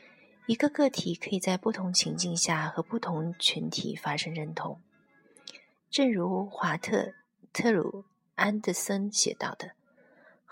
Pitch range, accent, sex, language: 170-225 Hz, native, female, Chinese